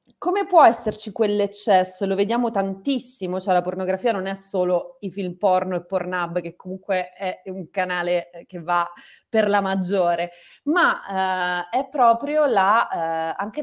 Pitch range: 175-245 Hz